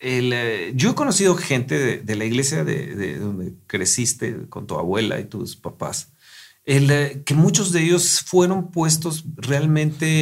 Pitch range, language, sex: 125-160 Hz, Portuguese, male